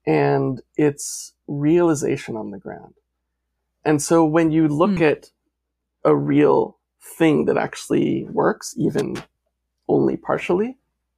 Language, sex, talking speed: English, male, 115 wpm